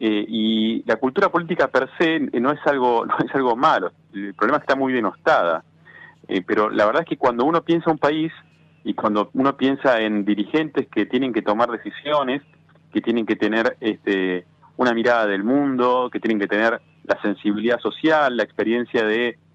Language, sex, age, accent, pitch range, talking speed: Italian, male, 30-49, Argentinian, 110-145 Hz, 185 wpm